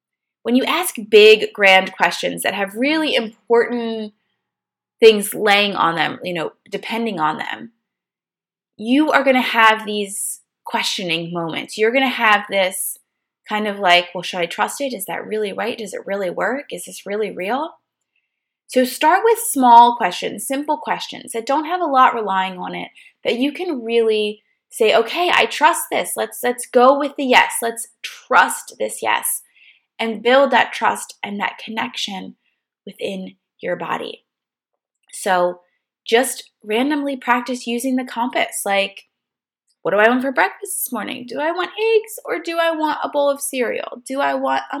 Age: 20-39